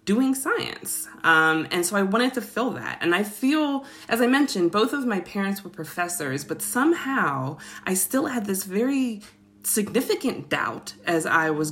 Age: 20-39